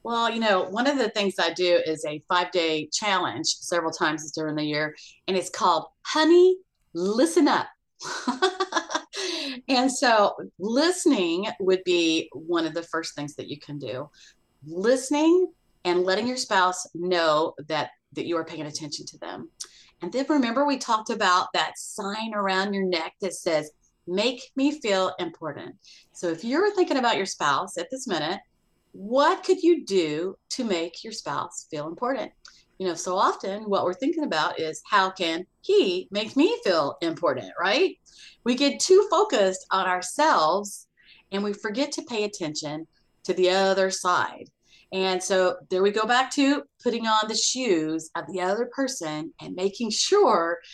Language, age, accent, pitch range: English, 30-49, American, 170-270 Hz